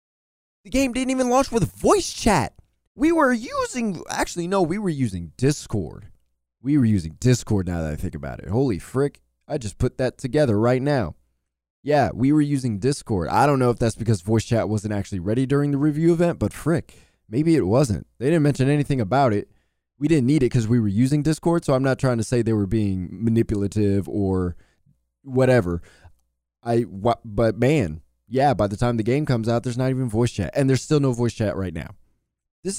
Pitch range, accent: 100-140 Hz, American